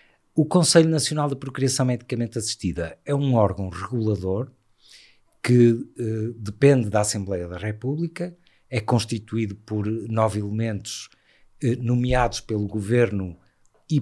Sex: male